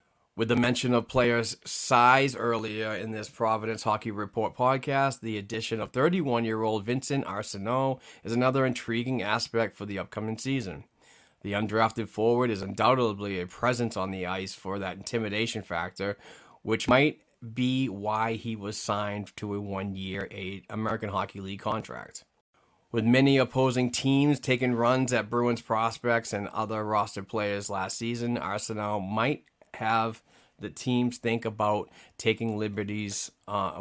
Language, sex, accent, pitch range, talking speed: English, male, American, 100-120 Hz, 140 wpm